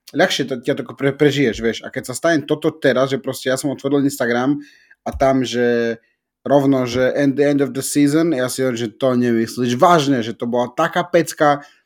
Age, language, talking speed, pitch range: 30-49, Slovak, 205 wpm, 125-145 Hz